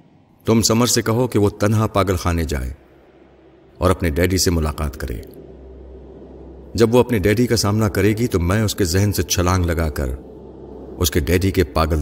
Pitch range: 75-100 Hz